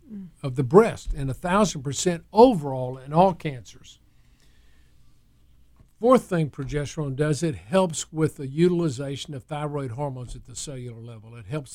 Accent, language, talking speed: American, English, 145 wpm